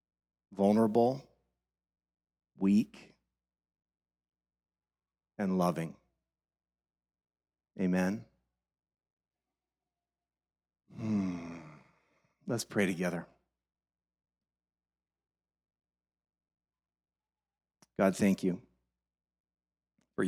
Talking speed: 40 wpm